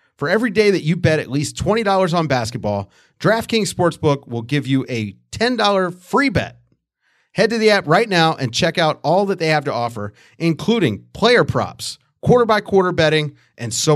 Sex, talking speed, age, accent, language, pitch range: male, 180 wpm, 30-49, American, English, 130-195 Hz